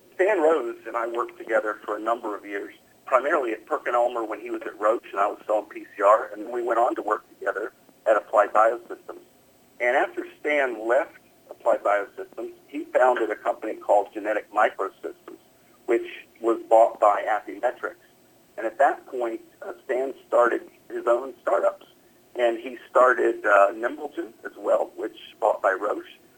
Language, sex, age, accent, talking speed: English, male, 50-69, American, 170 wpm